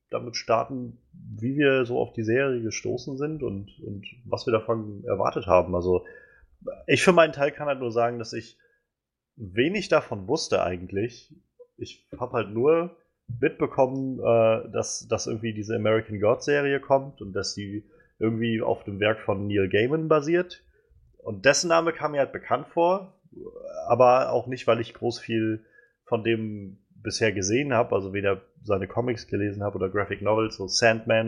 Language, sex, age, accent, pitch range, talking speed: German, male, 30-49, German, 105-130 Hz, 165 wpm